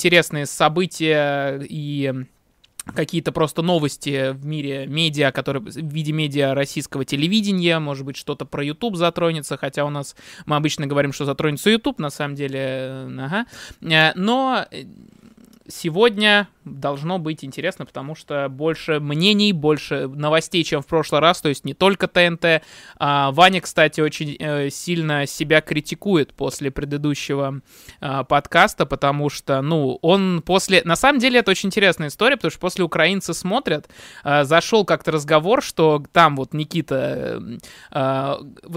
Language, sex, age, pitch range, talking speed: Russian, male, 20-39, 145-175 Hz, 135 wpm